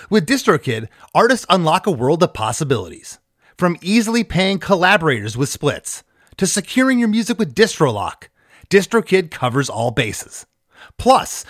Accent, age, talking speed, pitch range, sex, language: American, 30-49, 130 wpm, 140-210 Hz, male, English